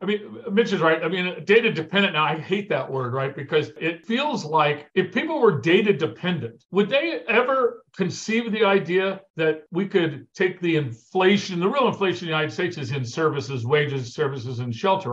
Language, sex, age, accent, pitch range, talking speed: English, male, 50-69, American, 160-215 Hz, 200 wpm